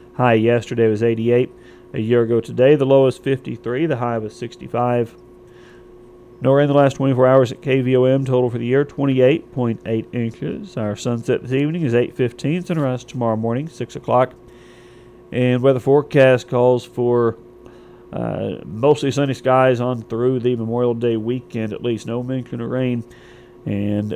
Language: English